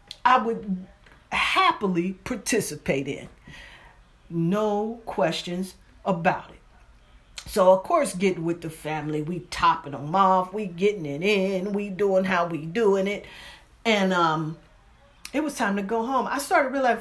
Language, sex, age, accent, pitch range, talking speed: English, female, 40-59, American, 155-200 Hz, 145 wpm